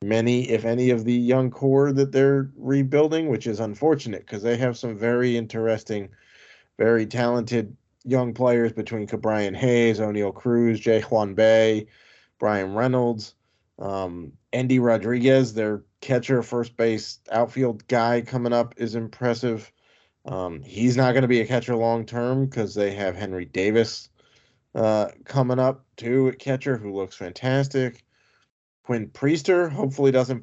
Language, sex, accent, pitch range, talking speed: English, male, American, 110-130 Hz, 145 wpm